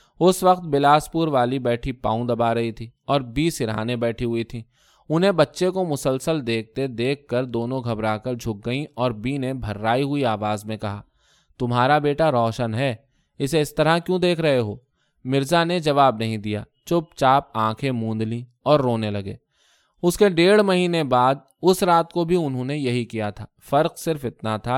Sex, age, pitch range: male, 20-39, 115-150 Hz